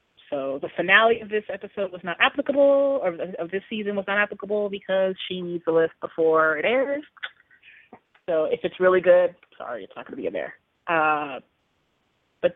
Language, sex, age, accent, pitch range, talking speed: English, female, 30-49, American, 160-195 Hz, 185 wpm